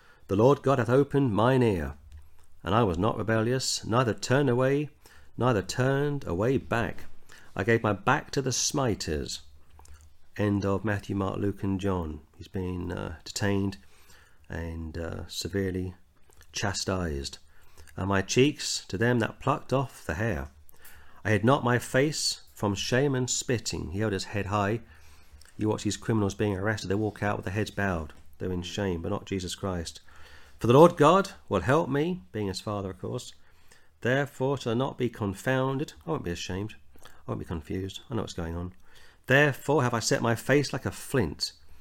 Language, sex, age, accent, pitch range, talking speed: English, male, 40-59, British, 85-125 Hz, 180 wpm